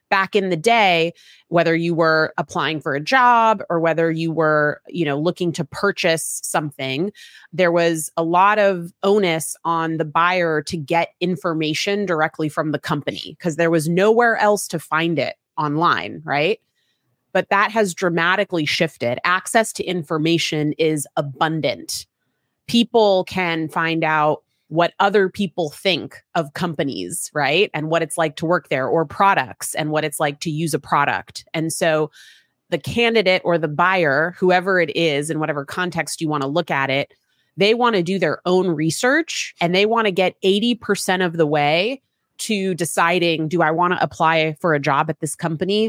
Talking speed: 175 wpm